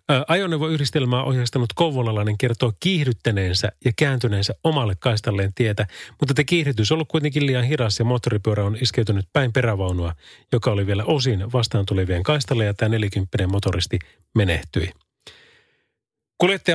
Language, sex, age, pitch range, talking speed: Finnish, male, 30-49, 105-145 Hz, 125 wpm